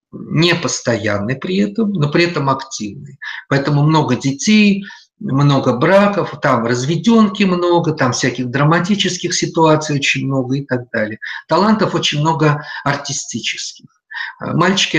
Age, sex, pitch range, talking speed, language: 50-69, male, 125-170 Hz, 115 wpm, Russian